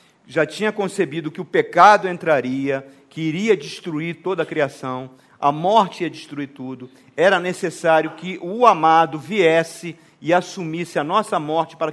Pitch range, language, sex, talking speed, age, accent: 160-220 Hz, Portuguese, male, 150 wpm, 40-59, Brazilian